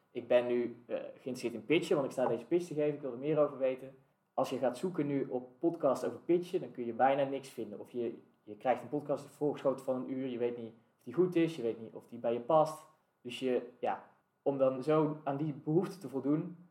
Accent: Dutch